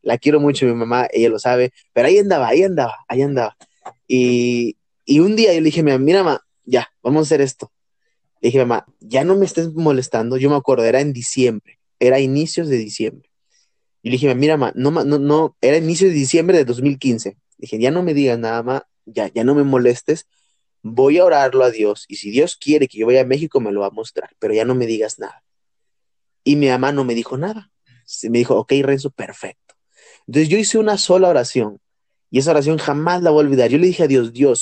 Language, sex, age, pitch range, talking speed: Spanish, male, 20-39, 125-165 Hz, 225 wpm